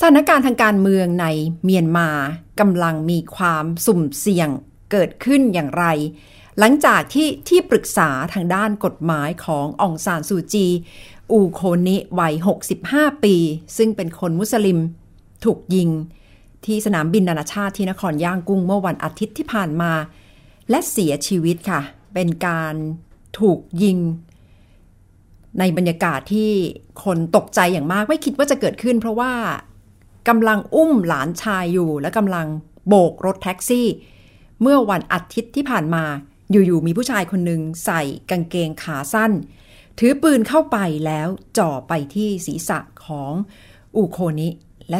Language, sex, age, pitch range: Thai, female, 60-79, 155-210 Hz